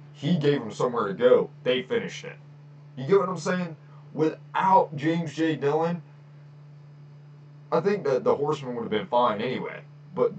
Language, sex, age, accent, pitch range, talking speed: English, male, 20-39, American, 145-155 Hz, 170 wpm